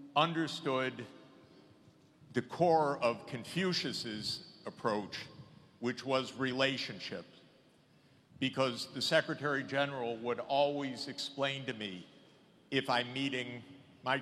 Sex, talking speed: male, 95 wpm